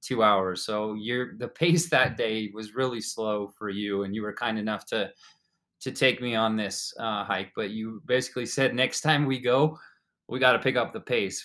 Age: 20-39